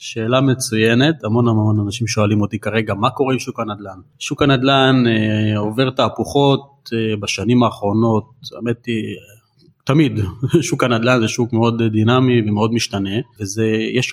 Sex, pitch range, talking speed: male, 110-135 Hz, 140 wpm